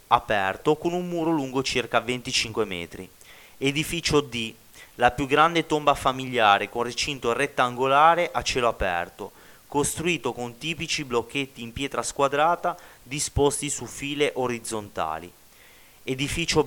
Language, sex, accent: Italian, male, native